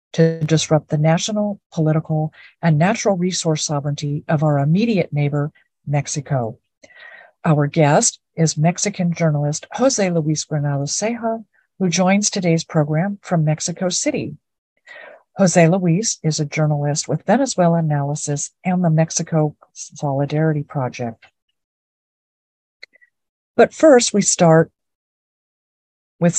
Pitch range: 150-185 Hz